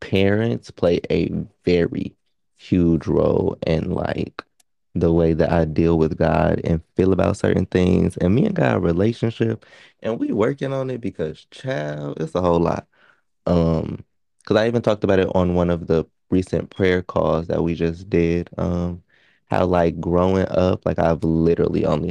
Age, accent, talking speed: 20-39, American, 170 wpm